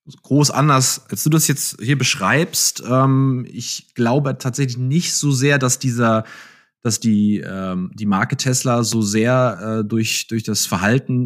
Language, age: German, 20-39